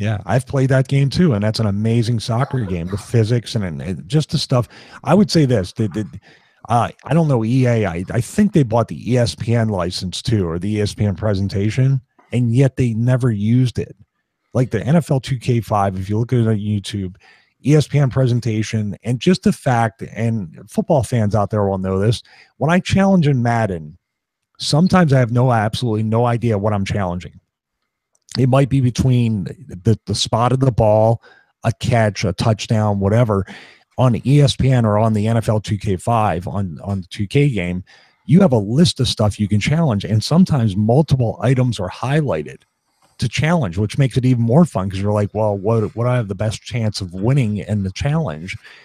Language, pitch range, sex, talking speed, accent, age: English, 105-130 Hz, male, 190 wpm, American, 30-49